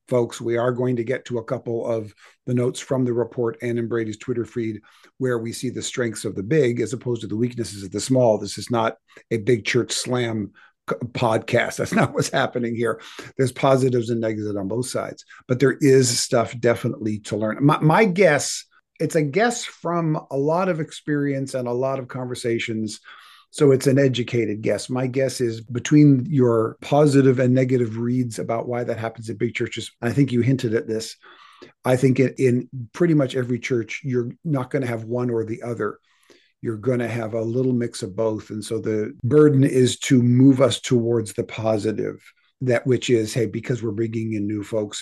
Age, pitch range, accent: 40-59, 110-125 Hz, American